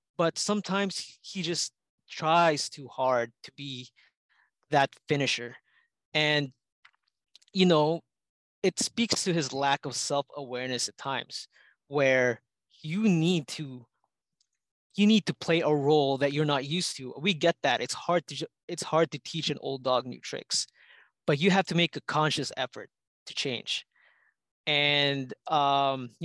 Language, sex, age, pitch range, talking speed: English, male, 20-39, 140-170 Hz, 150 wpm